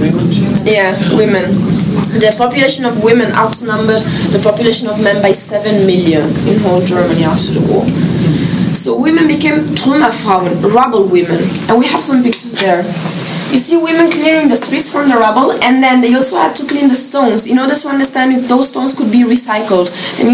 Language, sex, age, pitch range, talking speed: English, female, 20-39, 200-255 Hz, 180 wpm